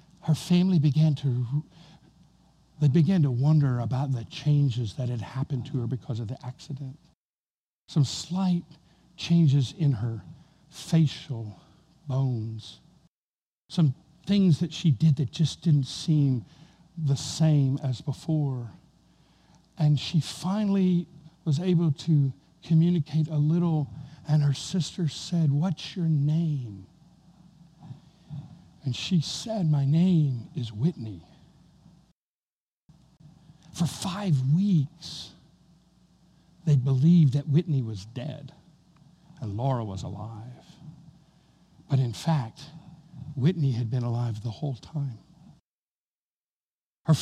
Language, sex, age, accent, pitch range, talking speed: English, male, 60-79, American, 135-165 Hz, 110 wpm